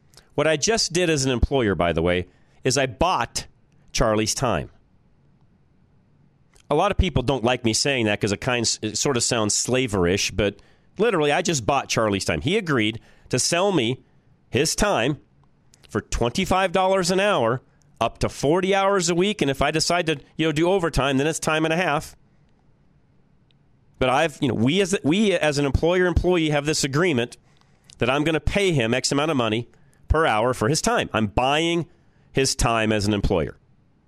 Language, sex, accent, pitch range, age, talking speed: English, male, American, 110-155 Hz, 40-59, 190 wpm